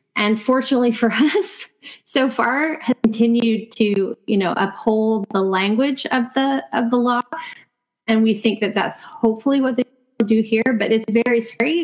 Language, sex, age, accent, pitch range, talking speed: English, female, 30-49, American, 195-235 Hz, 170 wpm